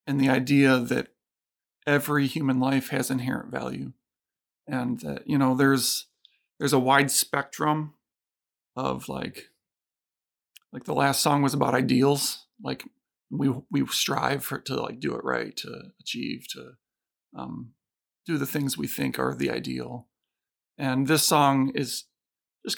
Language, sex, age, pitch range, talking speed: English, male, 40-59, 115-140 Hz, 145 wpm